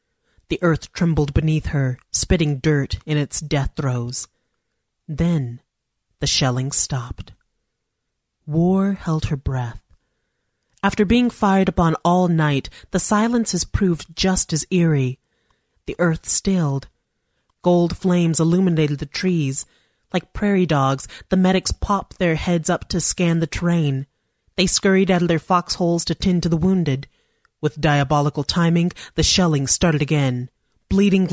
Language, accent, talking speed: English, American, 135 wpm